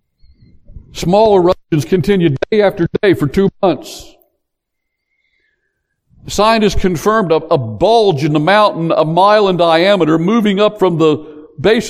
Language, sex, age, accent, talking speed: English, male, 60-79, American, 130 wpm